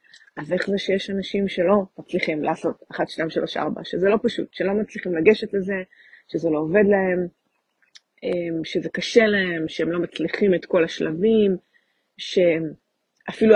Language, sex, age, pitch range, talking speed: Hebrew, female, 30-49, 180-230 Hz, 145 wpm